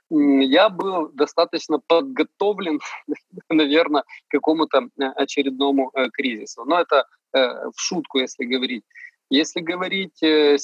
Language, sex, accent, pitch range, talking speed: Russian, male, native, 135-180 Hz, 95 wpm